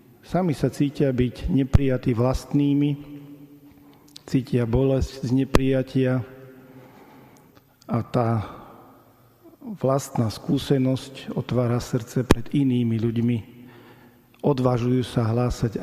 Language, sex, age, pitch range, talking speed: Slovak, male, 50-69, 115-135 Hz, 85 wpm